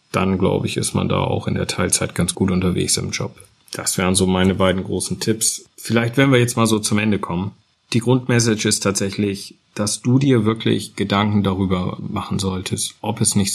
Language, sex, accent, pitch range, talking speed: German, male, German, 95-110 Hz, 205 wpm